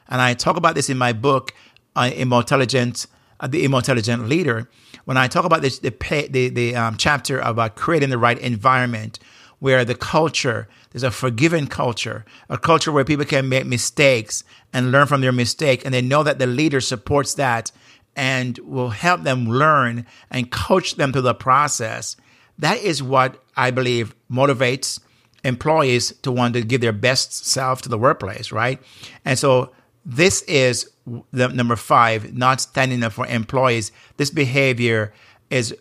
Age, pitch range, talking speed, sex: 50-69, 115-135 Hz, 170 wpm, male